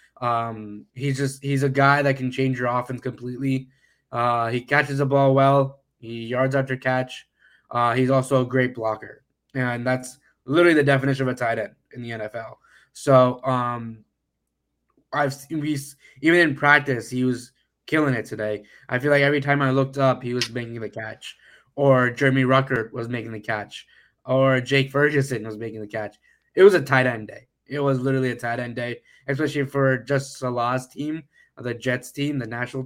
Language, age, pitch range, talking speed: English, 10-29, 120-140 Hz, 185 wpm